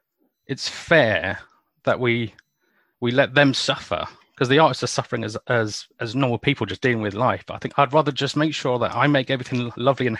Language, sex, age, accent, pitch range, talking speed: English, male, 40-59, British, 115-145 Hz, 210 wpm